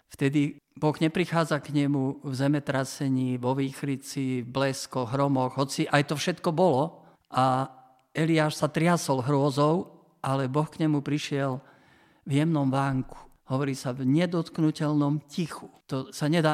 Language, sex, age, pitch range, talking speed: Slovak, male, 50-69, 135-155 Hz, 140 wpm